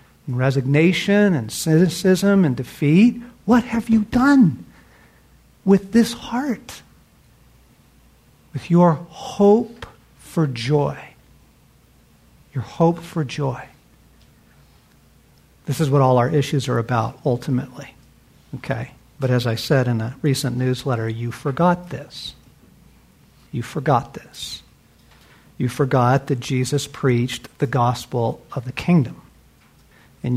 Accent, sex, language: American, male, English